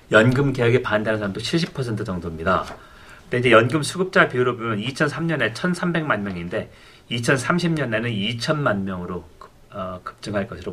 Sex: male